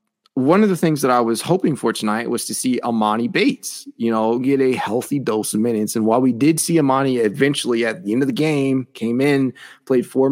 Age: 30-49